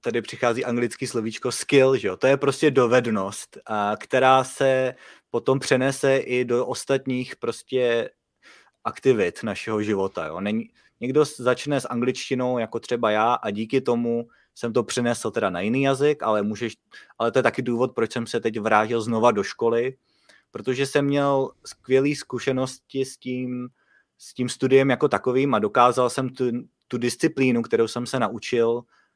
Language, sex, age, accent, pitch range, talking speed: Czech, male, 20-39, native, 105-130 Hz, 165 wpm